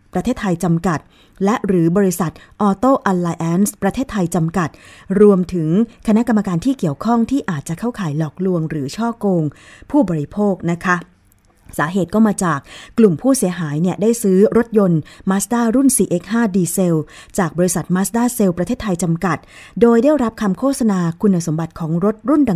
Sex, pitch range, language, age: female, 170-220 Hz, Thai, 20-39